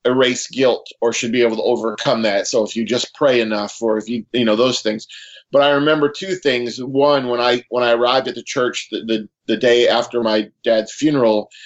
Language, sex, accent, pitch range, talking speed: English, male, American, 115-135 Hz, 225 wpm